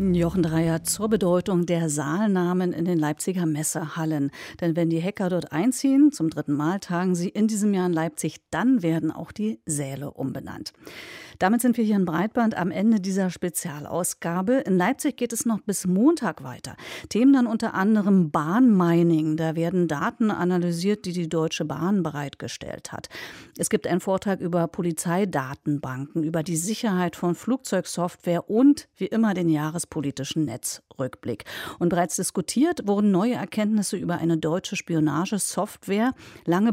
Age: 50-69